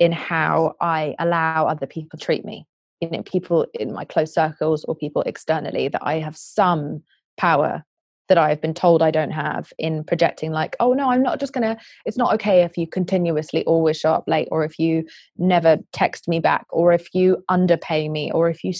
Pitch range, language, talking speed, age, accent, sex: 160-205 Hz, English, 210 wpm, 20-39, British, female